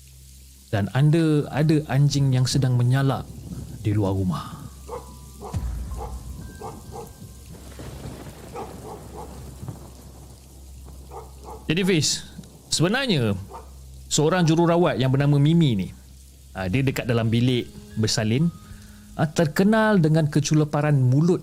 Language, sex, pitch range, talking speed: Malay, male, 100-145 Hz, 80 wpm